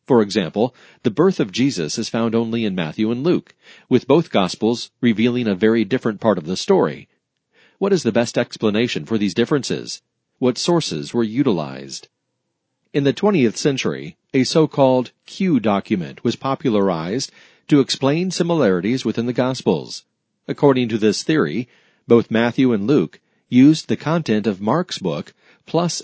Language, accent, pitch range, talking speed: English, American, 110-135 Hz, 155 wpm